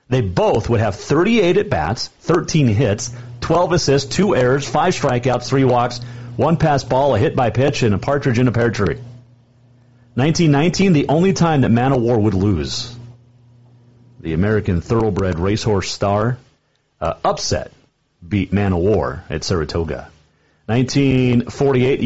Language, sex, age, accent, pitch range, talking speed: English, male, 40-59, American, 105-140 Hz, 150 wpm